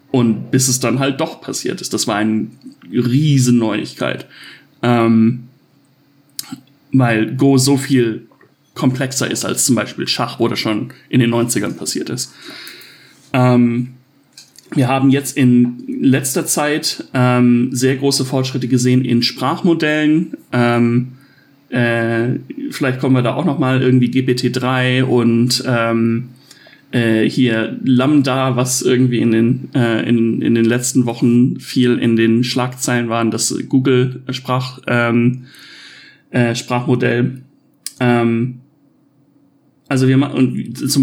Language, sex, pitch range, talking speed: German, male, 120-140 Hz, 125 wpm